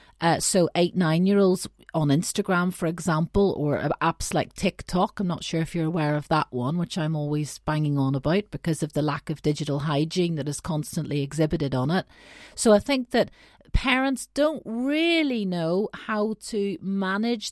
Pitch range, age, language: 155-205 Hz, 40-59, English